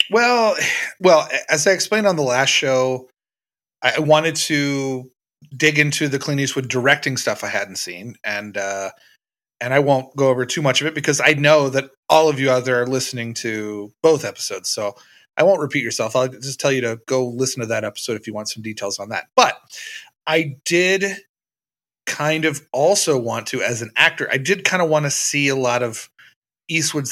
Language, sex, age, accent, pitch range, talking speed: English, male, 30-49, American, 120-150 Hz, 200 wpm